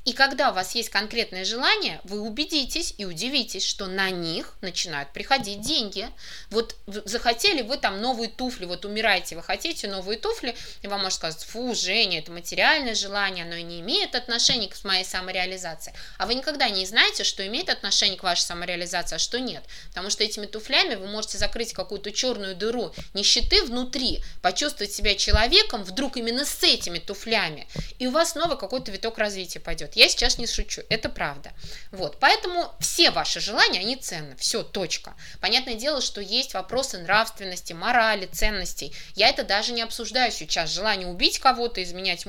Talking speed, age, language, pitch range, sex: 170 wpm, 20-39, Russian, 185-250 Hz, female